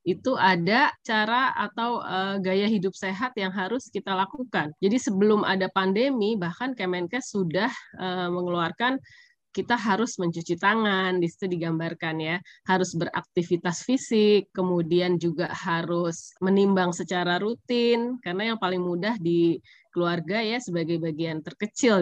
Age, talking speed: 20-39, 130 wpm